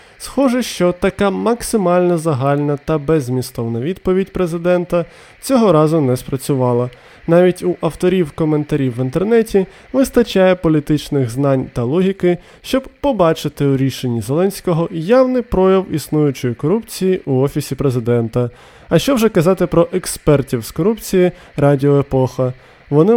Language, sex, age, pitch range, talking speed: Ukrainian, male, 20-39, 140-200 Hz, 120 wpm